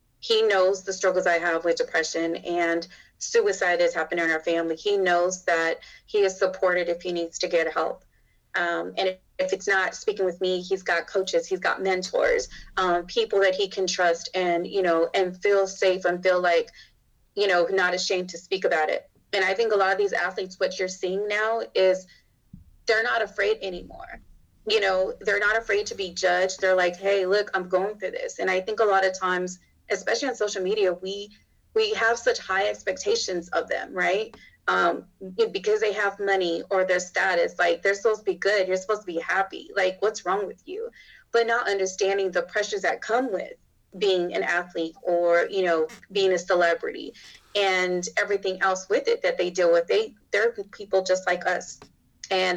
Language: English